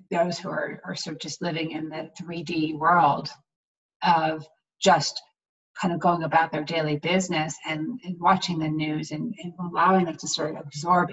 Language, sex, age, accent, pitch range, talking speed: English, female, 30-49, American, 160-195 Hz, 185 wpm